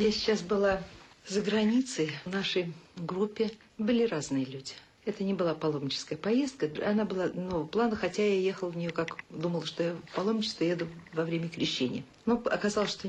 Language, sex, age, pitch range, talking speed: Russian, female, 50-69, 155-215 Hz, 175 wpm